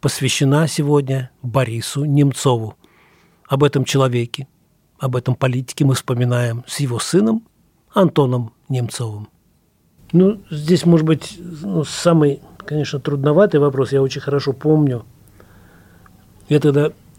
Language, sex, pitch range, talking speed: Russian, male, 105-145 Hz, 110 wpm